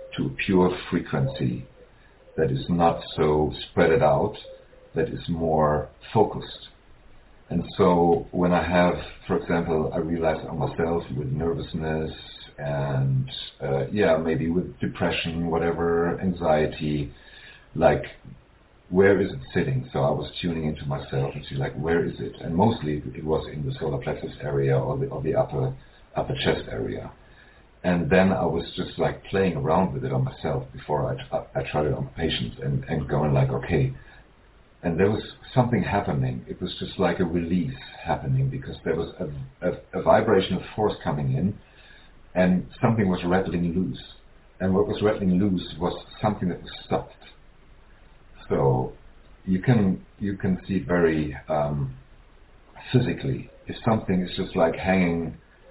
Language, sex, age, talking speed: English, male, 50-69, 160 wpm